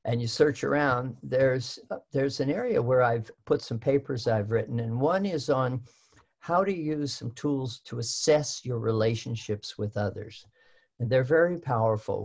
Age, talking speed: 50-69, 165 wpm